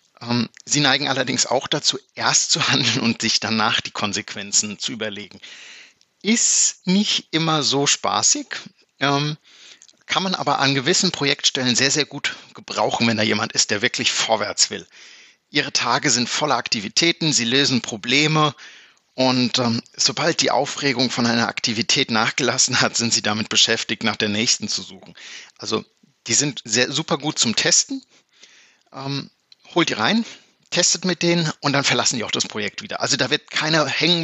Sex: male